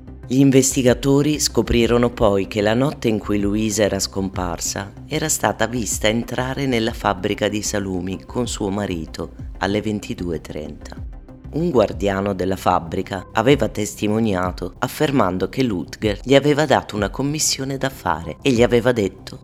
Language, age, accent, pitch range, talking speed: Italian, 30-49, native, 90-120 Hz, 140 wpm